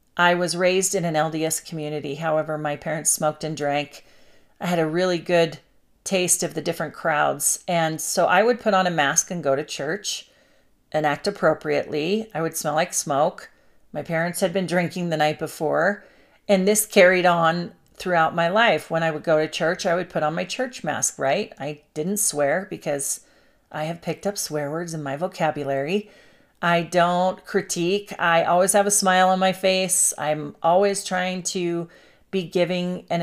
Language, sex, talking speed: English, female, 185 wpm